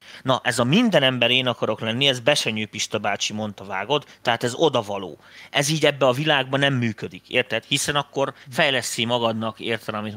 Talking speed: 175 wpm